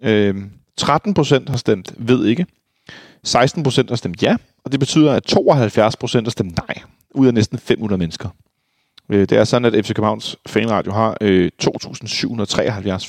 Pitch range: 105-130 Hz